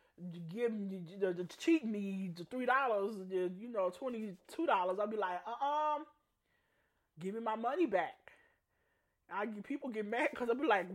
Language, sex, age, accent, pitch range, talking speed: English, male, 30-49, American, 185-285 Hz, 170 wpm